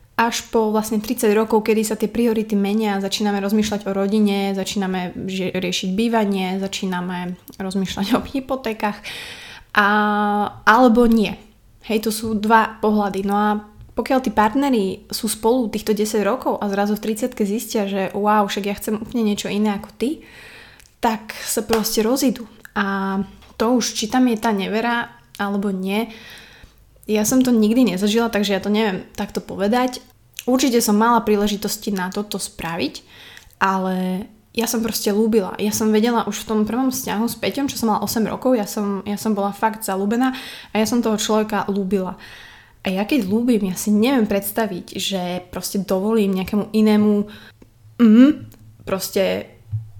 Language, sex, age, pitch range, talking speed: Slovak, female, 20-39, 200-230 Hz, 160 wpm